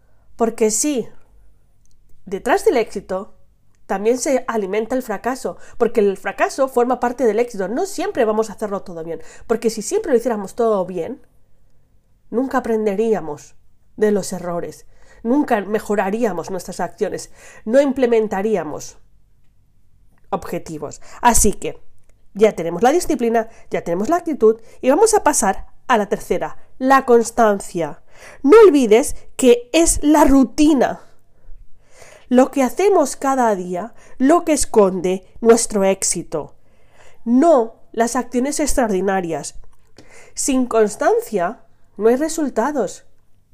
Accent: Spanish